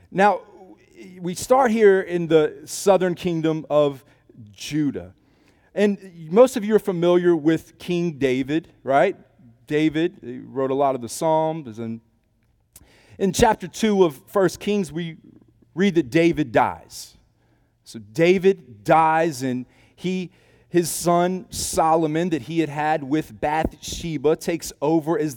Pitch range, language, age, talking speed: 120-170 Hz, English, 40-59, 135 wpm